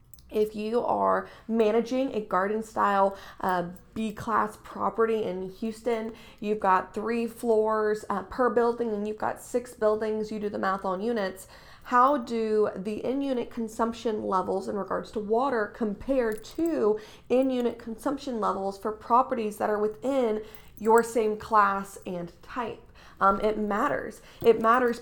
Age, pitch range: 20-39, 185-230 Hz